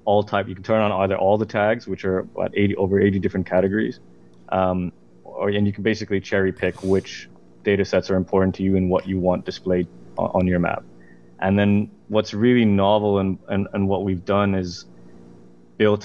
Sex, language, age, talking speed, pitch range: male, English, 20-39, 200 wpm, 95-105 Hz